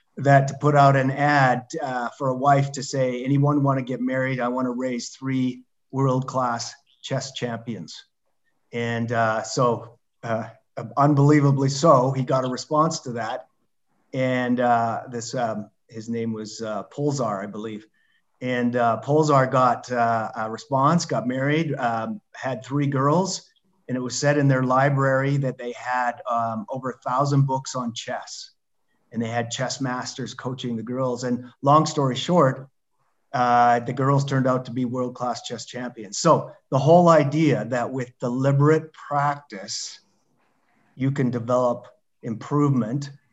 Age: 30-49